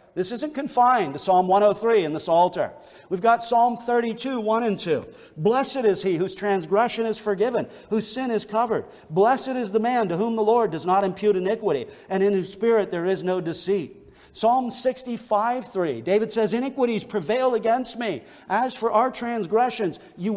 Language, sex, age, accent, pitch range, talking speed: English, male, 50-69, American, 195-255 Hz, 180 wpm